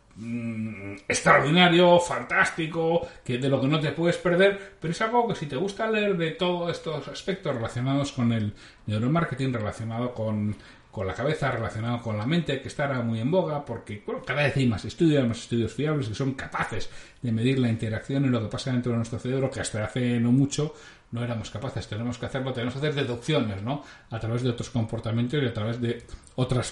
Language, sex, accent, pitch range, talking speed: Spanish, male, Spanish, 115-170 Hz, 205 wpm